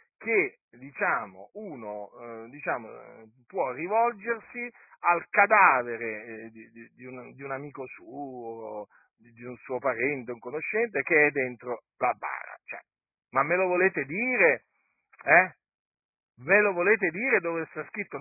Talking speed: 150 wpm